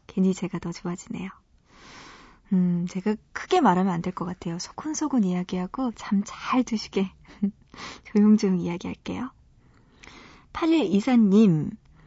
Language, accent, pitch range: Korean, native, 185-245 Hz